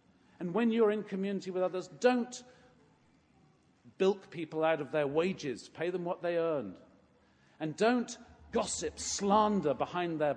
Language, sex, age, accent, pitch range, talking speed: English, male, 50-69, British, 130-175 Hz, 145 wpm